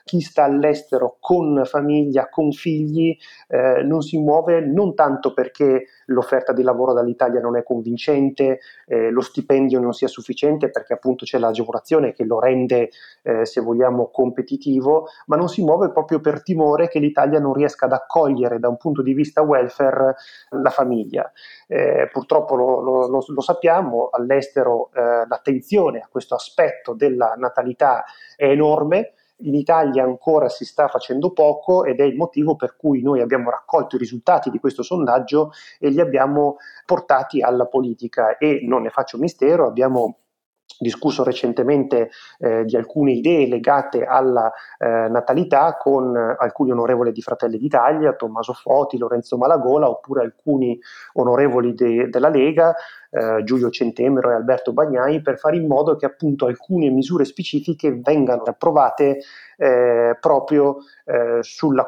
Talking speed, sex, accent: 150 wpm, male, native